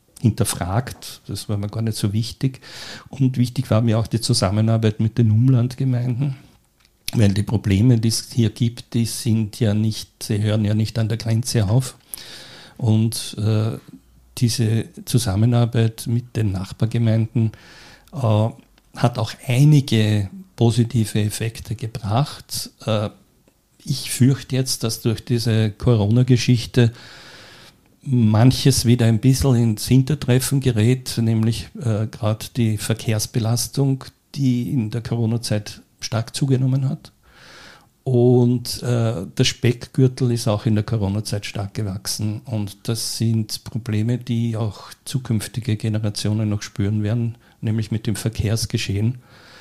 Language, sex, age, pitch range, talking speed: German, male, 50-69, 110-125 Hz, 120 wpm